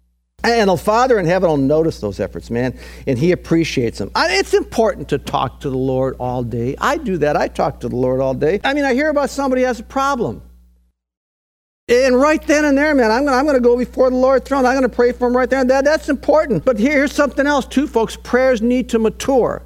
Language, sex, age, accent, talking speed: English, male, 50-69, American, 250 wpm